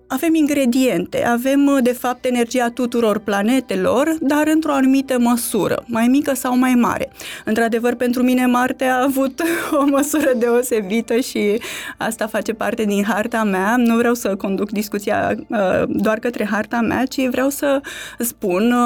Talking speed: 145 wpm